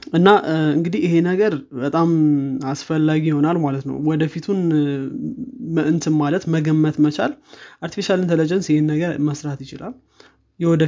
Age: 20-39